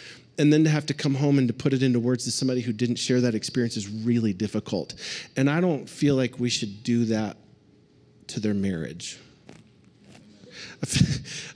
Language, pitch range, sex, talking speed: English, 120-155 Hz, male, 185 wpm